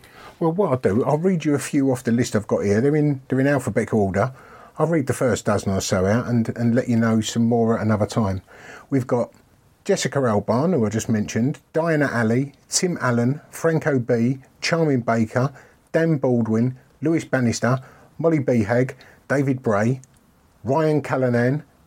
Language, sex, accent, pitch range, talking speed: English, male, British, 110-135 Hz, 180 wpm